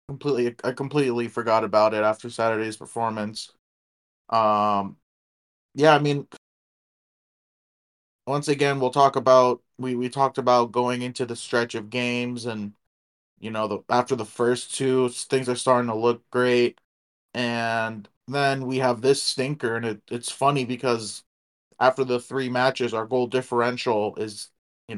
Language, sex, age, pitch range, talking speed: English, male, 30-49, 110-135 Hz, 150 wpm